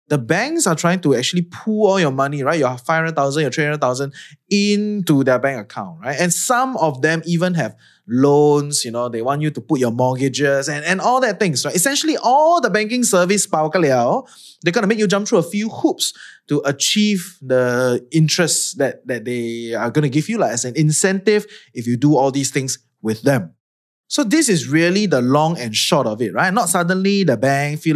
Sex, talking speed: male, 215 wpm